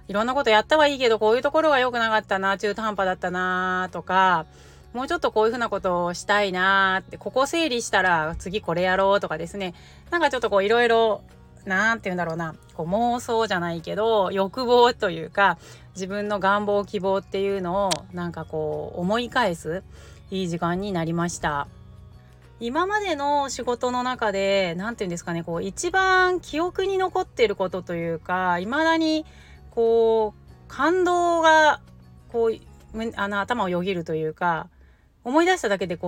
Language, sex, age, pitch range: Japanese, female, 30-49, 175-240 Hz